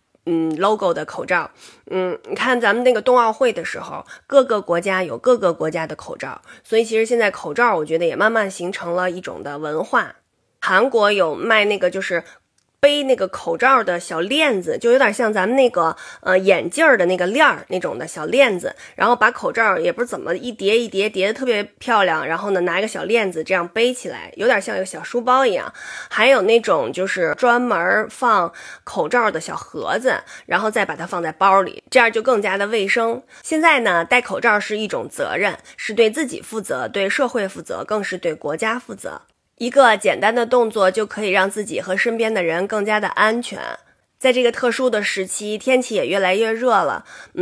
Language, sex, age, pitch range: Chinese, female, 20-39, 185-245 Hz